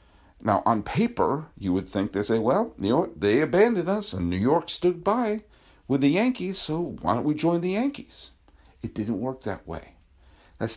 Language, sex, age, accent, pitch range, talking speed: English, male, 50-69, American, 80-120 Hz, 195 wpm